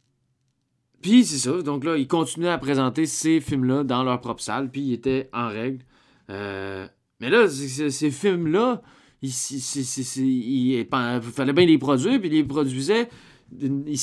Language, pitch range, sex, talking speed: French, 125-160 Hz, male, 185 wpm